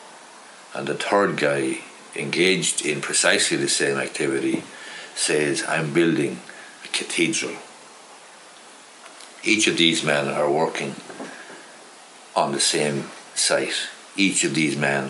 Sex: male